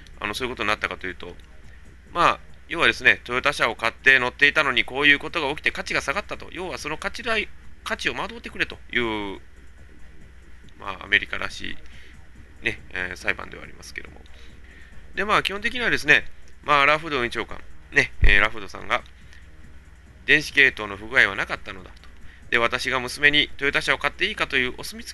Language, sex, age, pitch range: Japanese, male, 20-39, 75-125 Hz